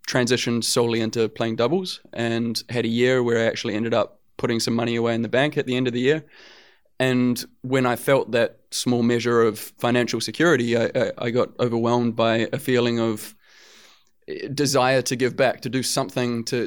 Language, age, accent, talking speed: English, 20-39, Australian, 190 wpm